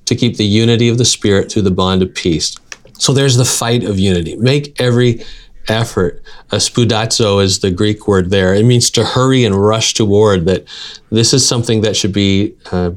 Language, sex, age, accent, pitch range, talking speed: English, male, 40-59, American, 100-120 Hz, 195 wpm